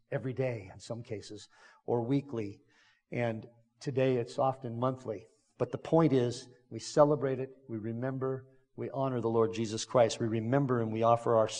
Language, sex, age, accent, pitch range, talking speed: English, male, 50-69, American, 120-150 Hz, 170 wpm